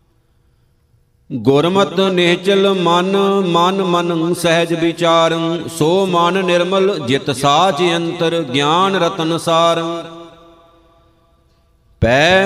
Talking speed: 80 wpm